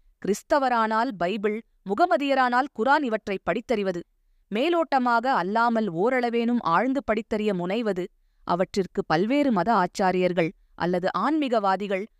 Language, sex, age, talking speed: Tamil, female, 20-39, 90 wpm